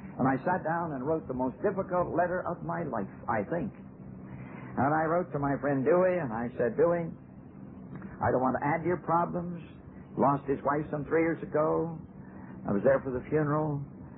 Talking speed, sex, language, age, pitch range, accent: 200 wpm, male, English, 60-79, 105-150 Hz, American